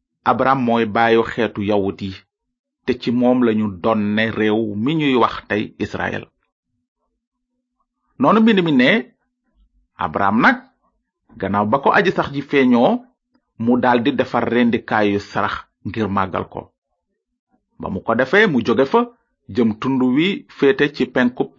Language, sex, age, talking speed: French, male, 40-59, 85 wpm